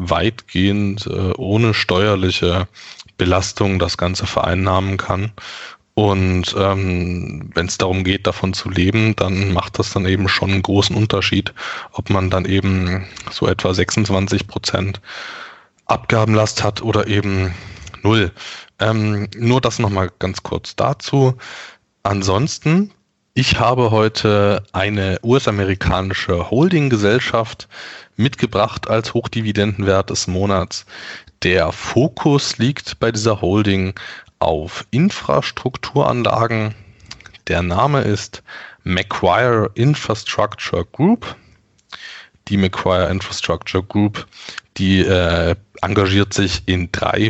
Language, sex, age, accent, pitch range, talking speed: German, male, 20-39, German, 95-110 Hz, 105 wpm